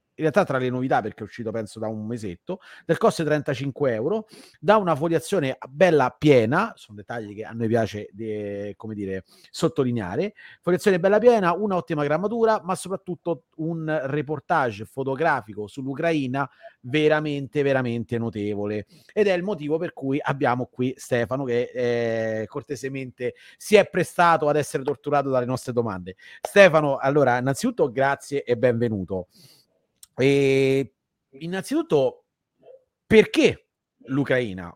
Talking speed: 135 wpm